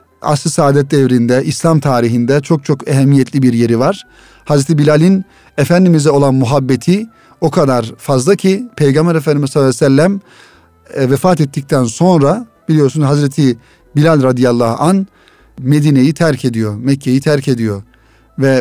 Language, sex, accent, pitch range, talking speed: Turkish, male, native, 130-150 Hz, 125 wpm